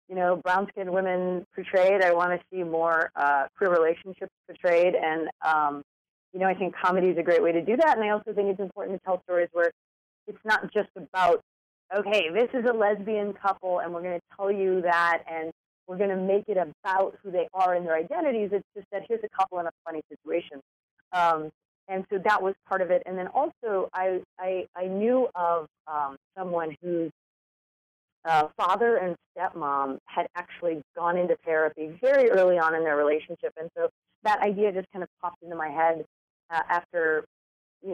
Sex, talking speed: female, 200 wpm